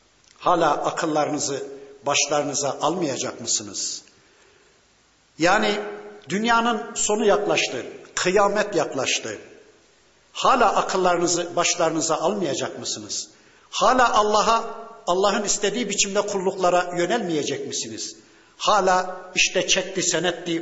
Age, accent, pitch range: 60-79, native, 160-205 Hz